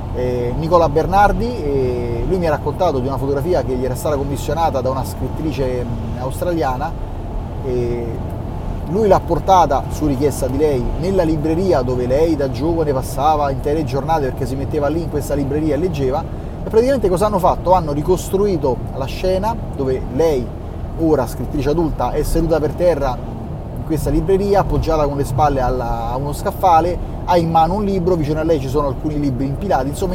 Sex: male